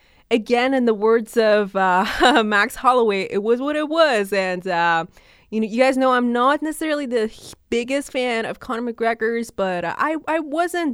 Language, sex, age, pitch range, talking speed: English, female, 20-39, 185-245 Hz, 180 wpm